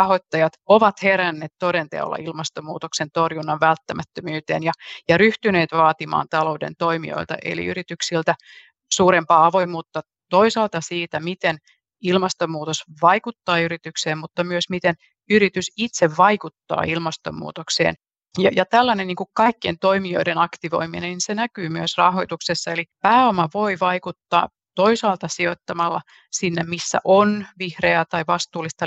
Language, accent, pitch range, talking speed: Finnish, native, 165-190 Hz, 110 wpm